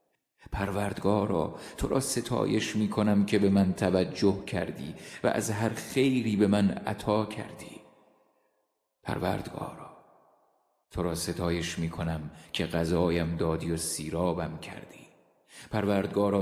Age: 30-49